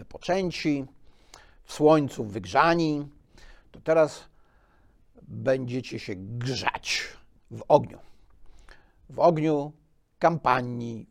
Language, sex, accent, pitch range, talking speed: Polish, male, native, 115-160 Hz, 75 wpm